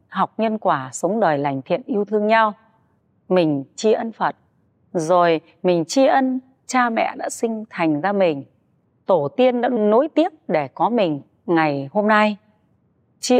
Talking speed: 165 wpm